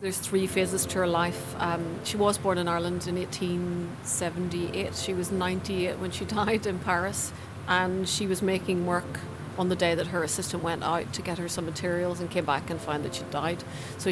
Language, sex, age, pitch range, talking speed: English, female, 40-59, 170-190 Hz, 210 wpm